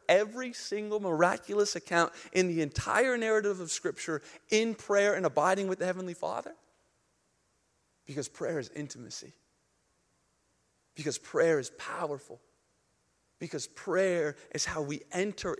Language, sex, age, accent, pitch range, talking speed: English, male, 40-59, American, 155-220 Hz, 125 wpm